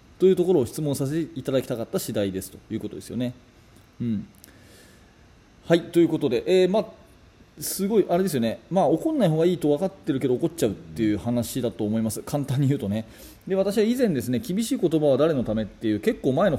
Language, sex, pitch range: Japanese, male, 115-175 Hz